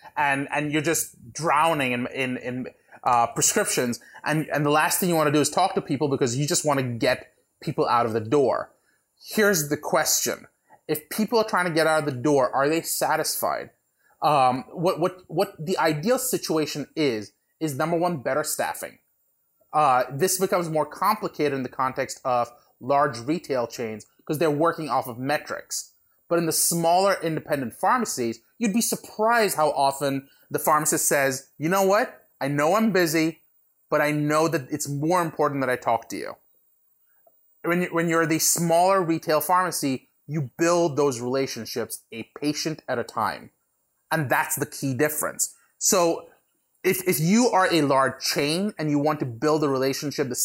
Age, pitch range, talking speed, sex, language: 20-39, 140-180 Hz, 180 wpm, male, English